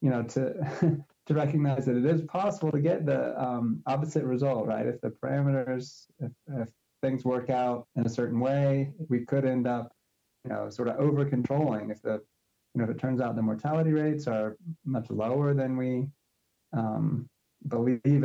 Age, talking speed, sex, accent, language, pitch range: 20-39, 180 wpm, male, American, English, 110-130 Hz